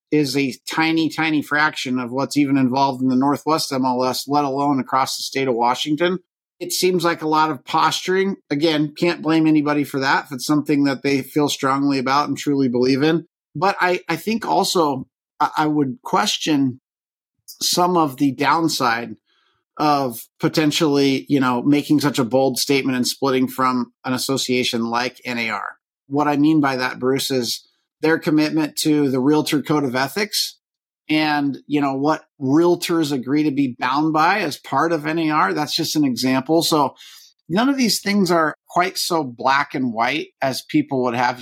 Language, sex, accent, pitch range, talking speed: English, male, American, 130-160 Hz, 175 wpm